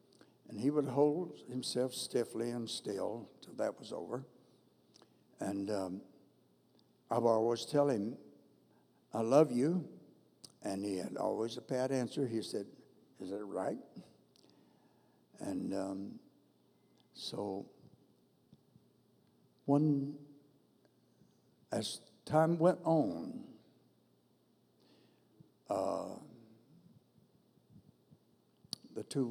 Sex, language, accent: male, English, American